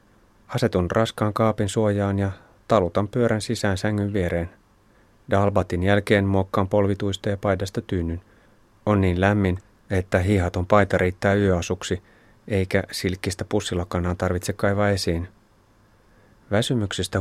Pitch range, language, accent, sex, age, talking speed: 90-105 Hz, Finnish, native, male, 30-49, 110 wpm